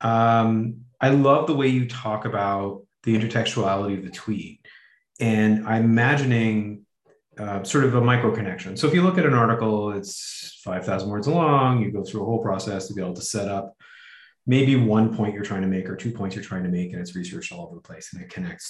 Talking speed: 220 wpm